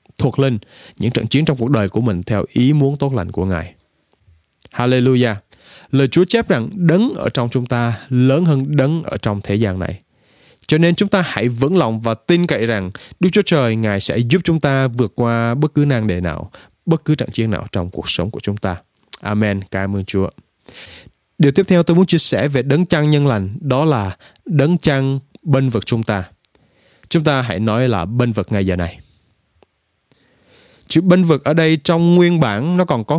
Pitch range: 105-155 Hz